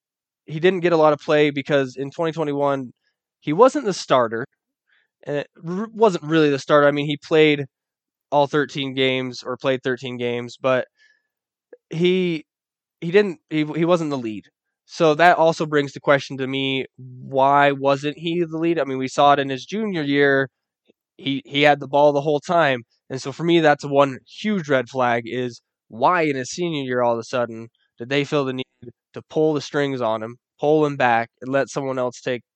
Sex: male